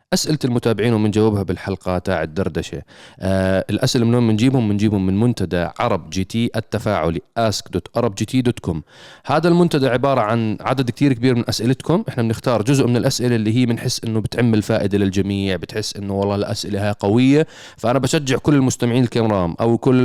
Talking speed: 155 wpm